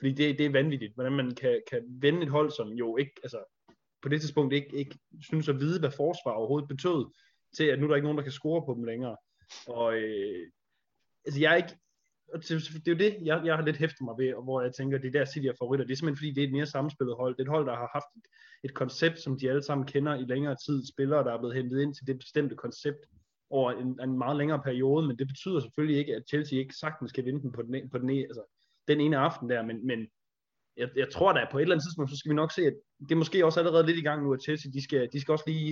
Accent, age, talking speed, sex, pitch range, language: native, 20-39, 270 wpm, male, 130-160 Hz, Danish